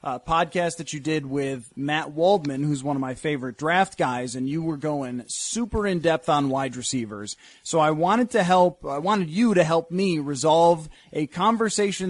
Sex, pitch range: male, 145-180 Hz